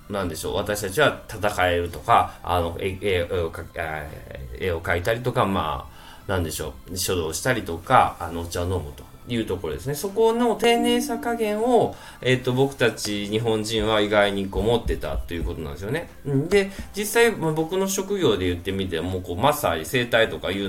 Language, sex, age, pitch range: Japanese, male, 20-39, 90-135 Hz